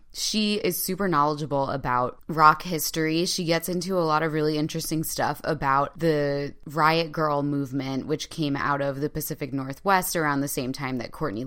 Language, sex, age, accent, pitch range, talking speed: English, female, 20-39, American, 145-175 Hz, 180 wpm